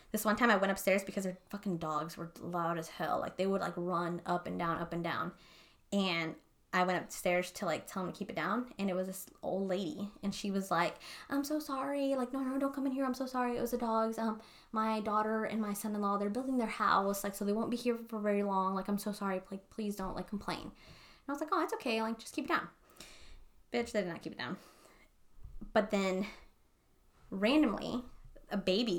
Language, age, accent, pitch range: English, 20-39, American, 190-230 Hz